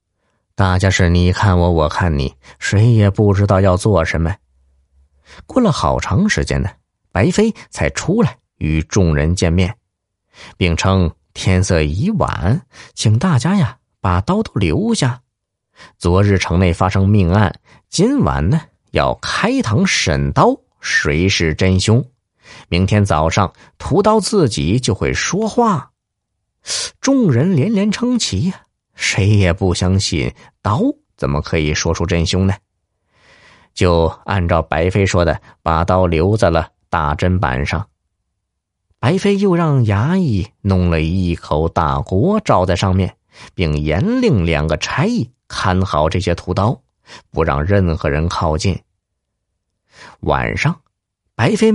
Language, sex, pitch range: Chinese, male, 85-110 Hz